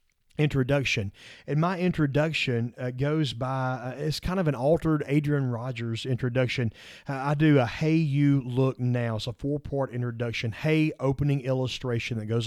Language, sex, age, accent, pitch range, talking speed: English, male, 30-49, American, 115-150 Hz, 155 wpm